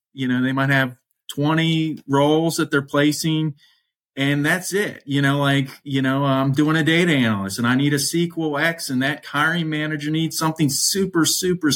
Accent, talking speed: American, 190 wpm